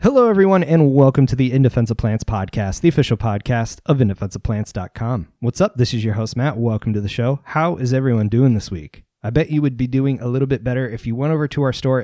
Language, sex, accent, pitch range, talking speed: English, male, American, 110-135 Hz, 245 wpm